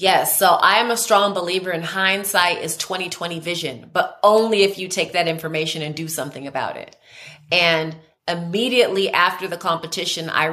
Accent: American